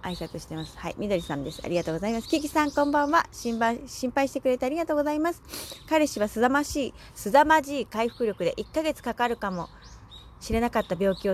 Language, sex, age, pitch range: Japanese, female, 30-49, 190-265 Hz